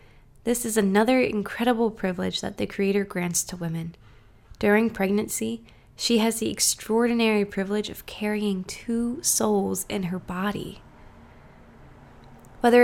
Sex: female